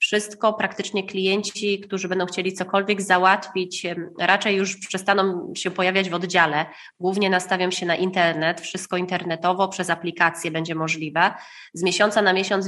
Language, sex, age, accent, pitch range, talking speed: Polish, female, 20-39, native, 175-195 Hz, 140 wpm